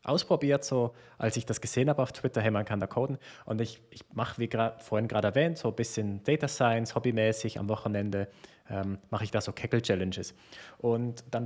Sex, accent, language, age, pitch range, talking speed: male, German, German, 20-39, 105-125 Hz, 205 wpm